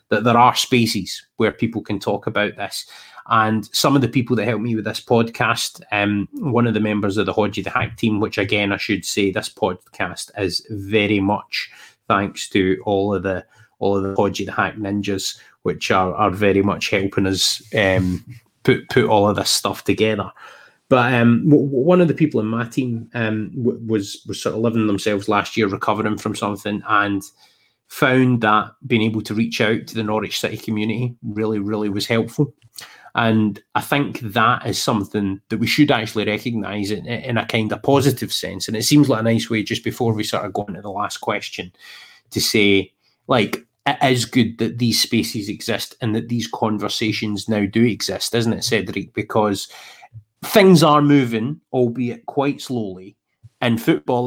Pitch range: 105-120 Hz